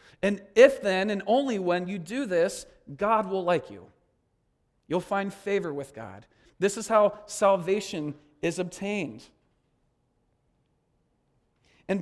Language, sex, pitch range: English, male, 175-225 Hz